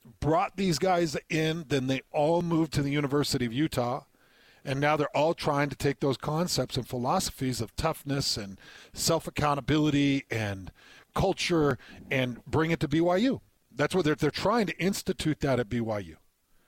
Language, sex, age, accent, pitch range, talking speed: English, male, 50-69, American, 135-170 Hz, 160 wpm